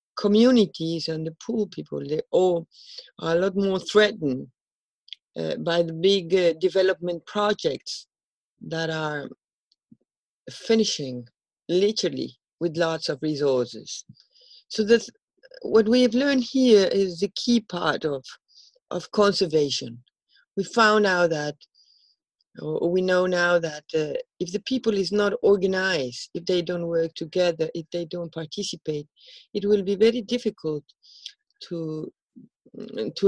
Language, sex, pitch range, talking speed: English, female, 165-220 Hz, 130 wpm